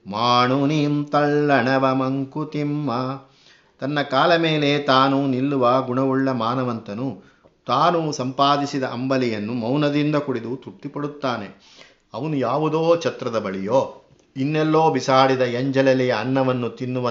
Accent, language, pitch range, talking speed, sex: native, Kannada, 125-145 Hz, 90 wpm, male